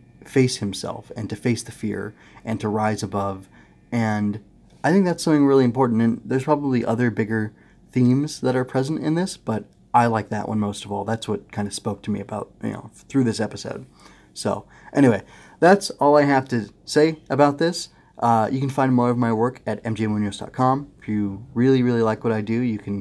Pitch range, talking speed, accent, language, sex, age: 105-125 Hz, 210 wpm, American, English, male, 20-39